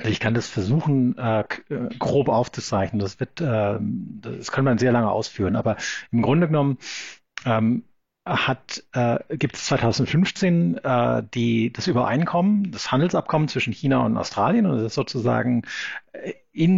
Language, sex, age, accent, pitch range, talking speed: German, male, 50-69, German, 115-150 Hz, 130 wpm